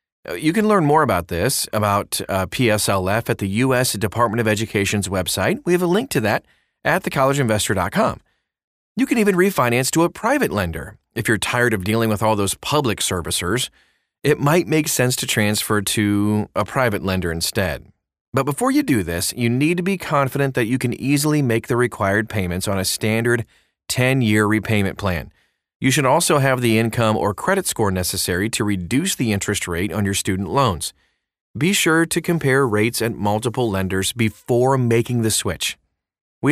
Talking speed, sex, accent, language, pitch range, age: 180 wpm, male, American, English, 100-140 Hz, 30-49